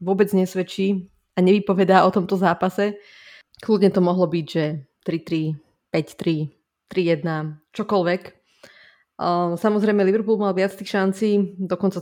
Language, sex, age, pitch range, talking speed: Slovak, female, 20-39, 175-195 Hz, 115 wpm